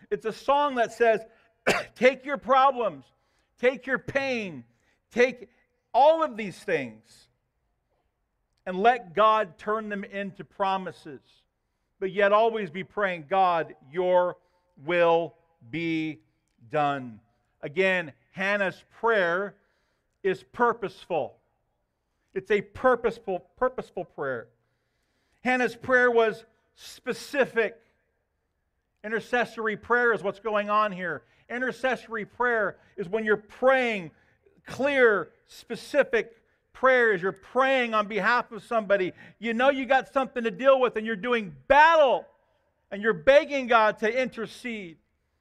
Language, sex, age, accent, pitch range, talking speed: English, male, 50-69, American, 175-235 Hz, 115 wpm